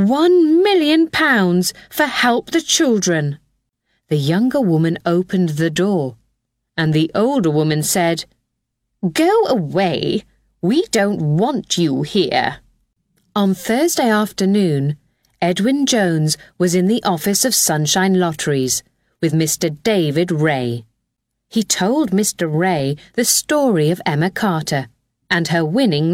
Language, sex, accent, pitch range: Chinese, female, British, 150-205 Hz